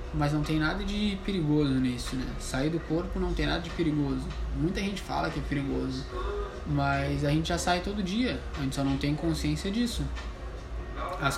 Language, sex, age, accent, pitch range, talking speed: Portuguese, male, 20-39, Brazilian, 135-165 Hz, 195 wpm